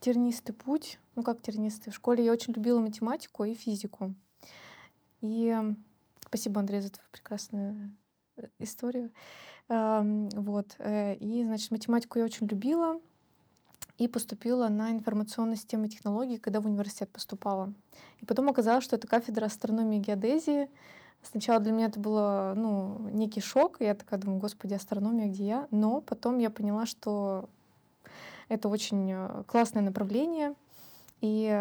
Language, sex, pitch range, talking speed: Russian, female, 205-235 Hz, 135 wpm